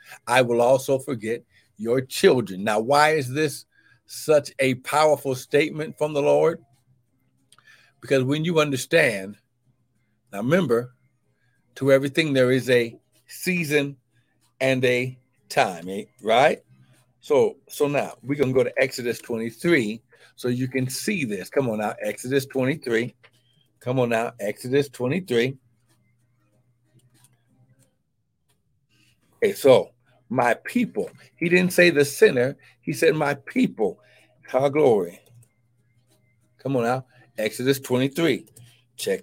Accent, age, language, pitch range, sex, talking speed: American, 60-79, English, 120-140 Hz, male, 120 wpm